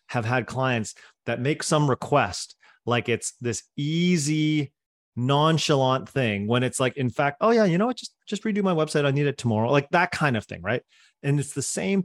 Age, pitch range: 30-49, 105-140 Hz